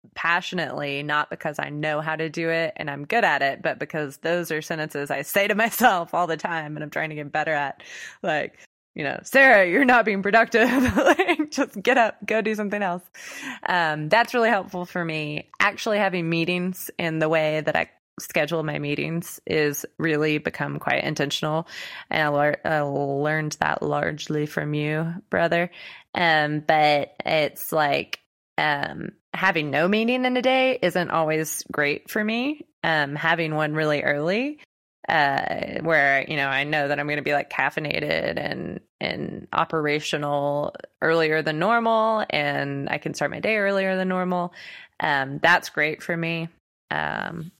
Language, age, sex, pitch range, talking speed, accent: English, 20-39, female, 145-180 Hz, 170 wpm, American